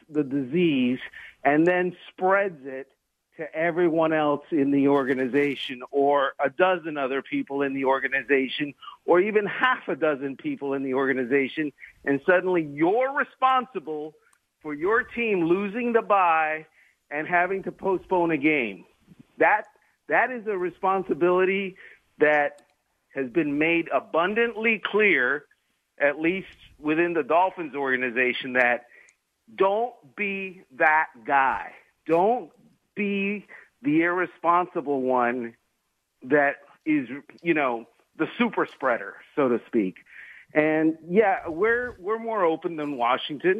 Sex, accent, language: male, American, English